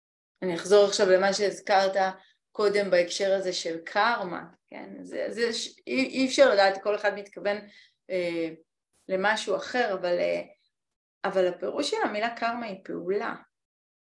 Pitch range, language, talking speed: 185-230 Hz, Hebrew, 140 wpm